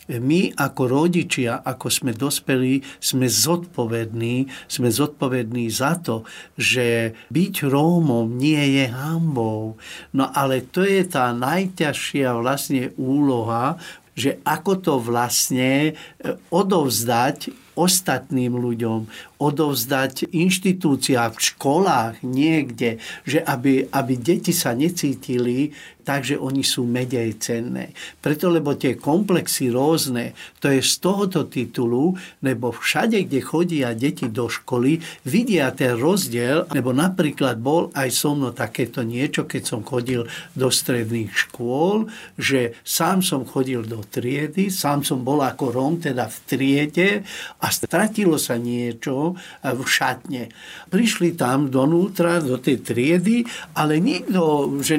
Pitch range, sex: 125-165 Hz, male